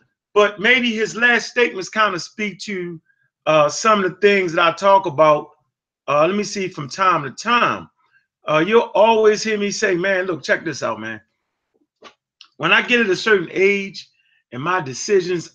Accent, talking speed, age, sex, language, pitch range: American, 185 wpm, 30-49, male, English, 160-215 Hz